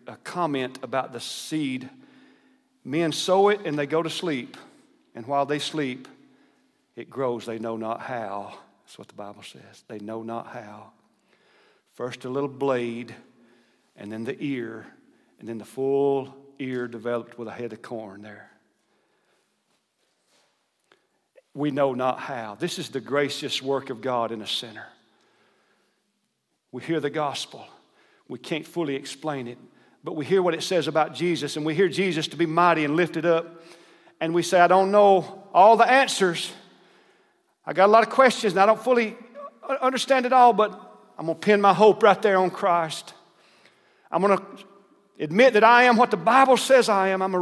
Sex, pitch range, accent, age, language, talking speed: male, 140-230 Hz, American, 50-69, English, 175 wpm